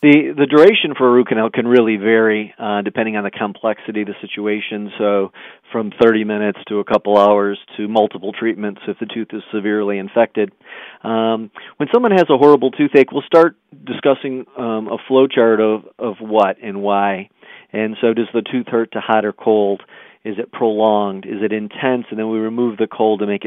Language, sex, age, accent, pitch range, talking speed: English, male, 40-59, American, 100-115 Hz, 200 wpm